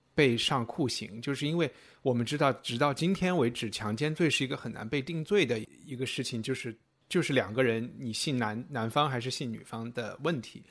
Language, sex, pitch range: Chinese, male, 120-150 Hz